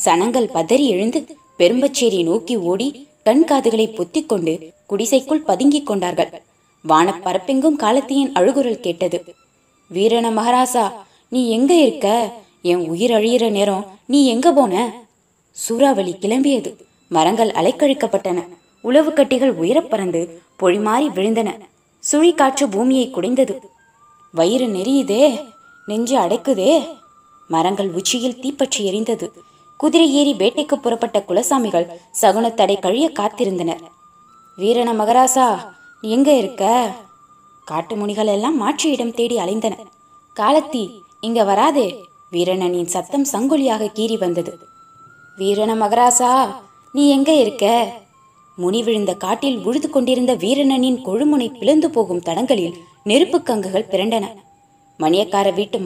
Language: Tamil